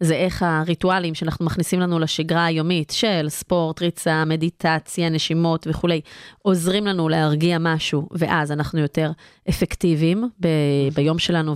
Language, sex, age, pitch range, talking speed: Hebrew, female, 30-49, 160-215 Hz, 130 wpm